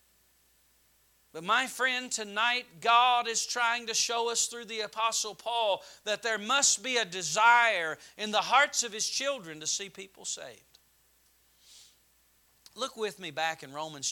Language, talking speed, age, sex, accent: English, 155 wpm, 40-59, male, American